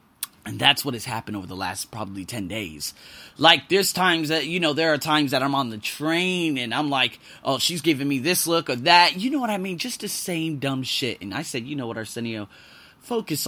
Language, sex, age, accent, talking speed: English, male, 20-39, American, 240 wpm